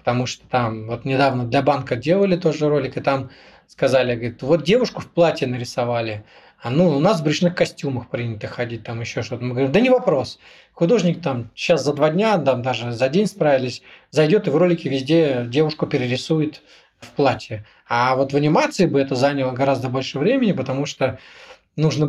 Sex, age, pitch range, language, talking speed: male, 20-39, 130-165 Hz, Russian, 185 wpm